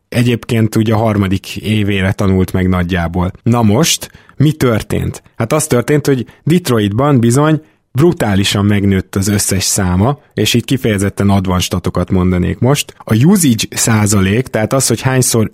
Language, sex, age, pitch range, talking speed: Hungarian, male, 20-39, 100-130 Hz, 140 wpm